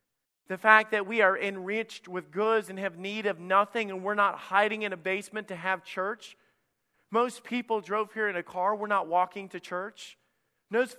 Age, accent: 40-59, American